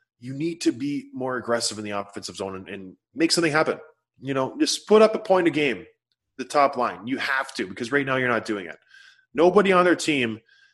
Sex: male